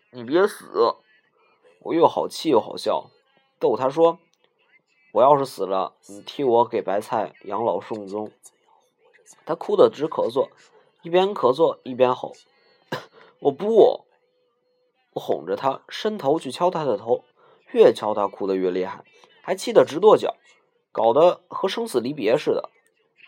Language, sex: Chinese, male